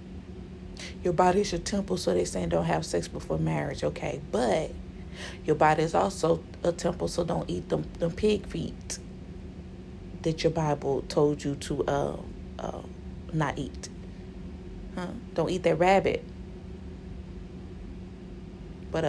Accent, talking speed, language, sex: American, 140 wpm, English, female